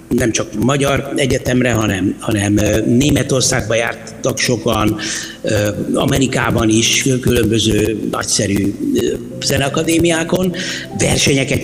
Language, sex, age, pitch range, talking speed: Hungarian, male, 60-79, 120-155 Hz, 75 wpm